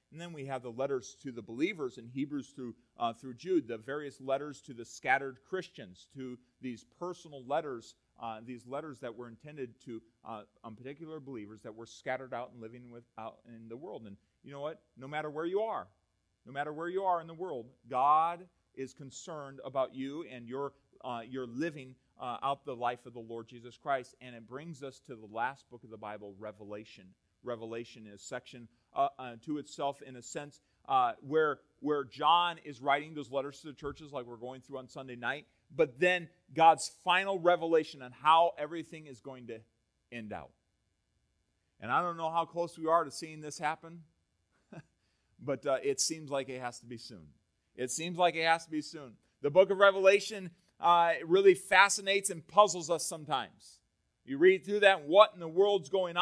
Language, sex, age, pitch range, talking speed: English, male, 30-49, 120-165 Hz, 200 wpm